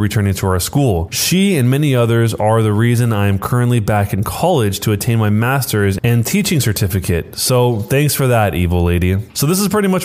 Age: 20-39